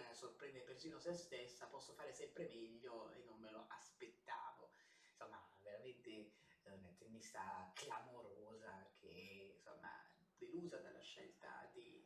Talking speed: 120 wpm